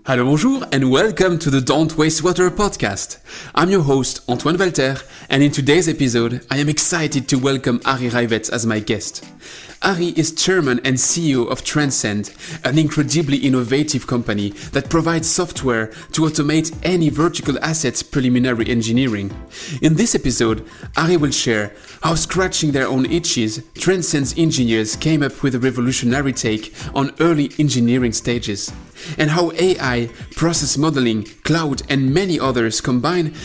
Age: 30-49